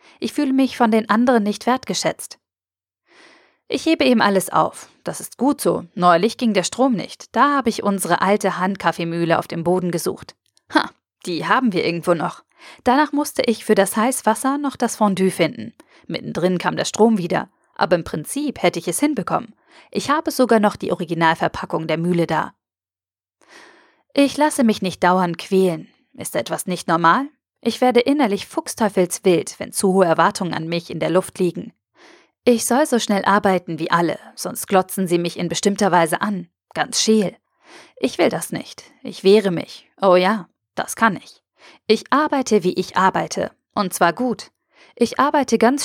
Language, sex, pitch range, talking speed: German, female, 175-240 Hz, 175 wpm